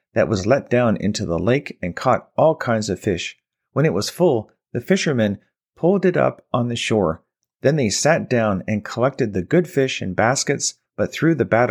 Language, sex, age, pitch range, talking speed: English, male, 30-49, 105-135 Hz, 205 wpm